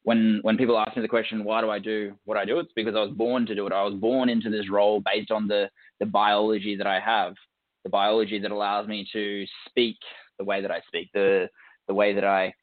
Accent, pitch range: Australian, 100-110 Hz